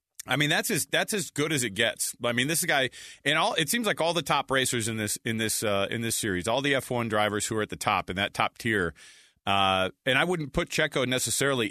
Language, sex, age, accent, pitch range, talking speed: English, male, 30-49, American, 110-140 Hz, 260 wpm